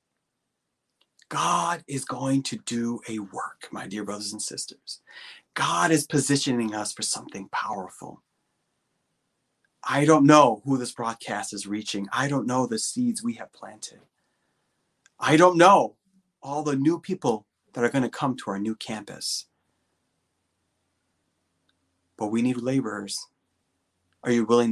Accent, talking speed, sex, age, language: American, 140 wpm, male, 30-49, English